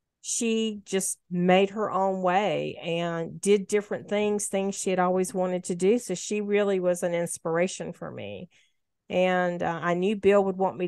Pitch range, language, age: 175-205 Hz, English, 50-69